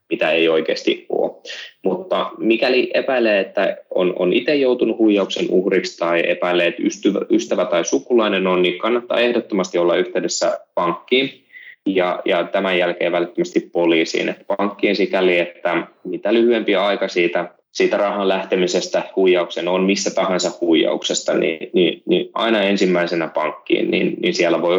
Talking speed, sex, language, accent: 145 wpm, male, Finnish, native